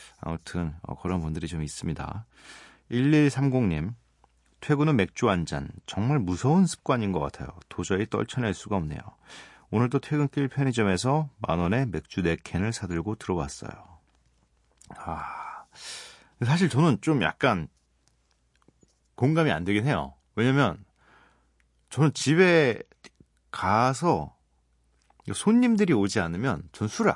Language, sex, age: Korean, male, 40-59